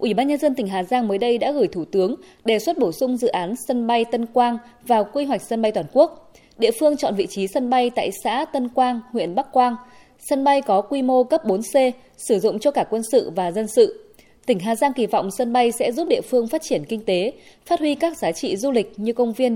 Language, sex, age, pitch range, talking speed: Vietnamese, female, 20-39, 215-270 Hz, 260 wpm